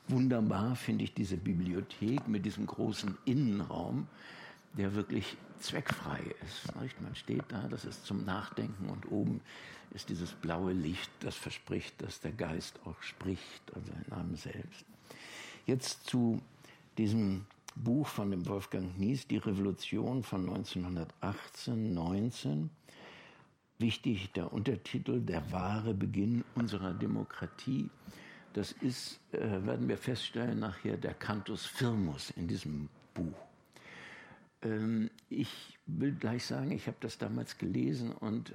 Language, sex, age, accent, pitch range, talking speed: German, male, 60-79, German, 95-115 Hz, 130 wpm